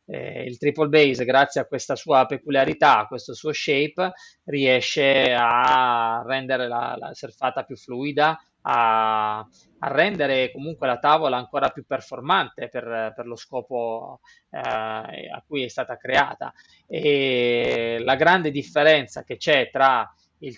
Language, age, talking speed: Italian, 20-39, 140 wpm